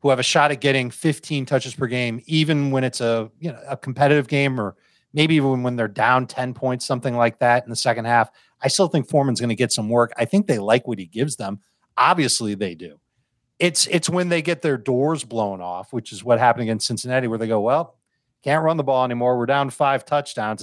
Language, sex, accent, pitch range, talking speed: English, male, American, 115-150 Hz, 240 wpm